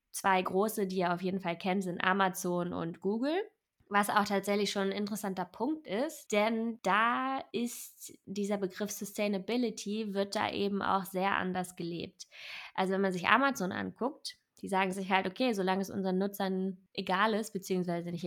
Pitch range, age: 180-220 Hz, 20-39